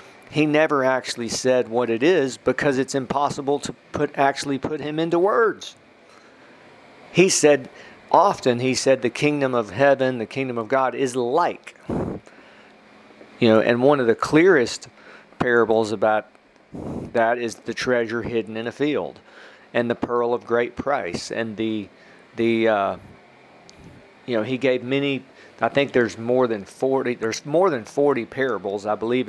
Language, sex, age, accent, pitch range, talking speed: English, male, 40-59, American, 110-135 Hz, 160 wpm